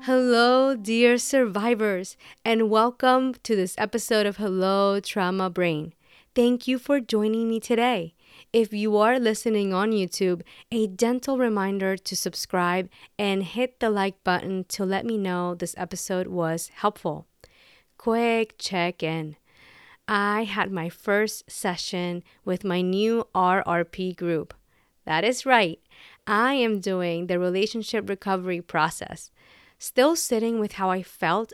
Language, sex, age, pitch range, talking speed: English, female, 30-49, 180-230 Hz, 135 wpm